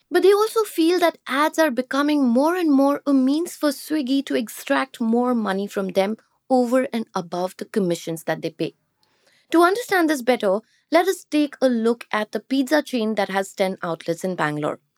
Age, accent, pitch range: 20-39, Indian, 210-295 Hz